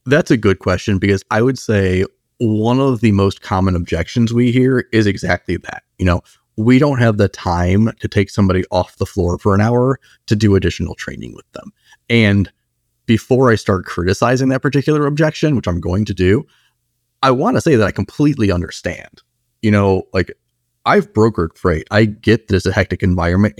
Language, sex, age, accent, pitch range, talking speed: English, male, 30-49, American, 95-115 Hz, 190 wpm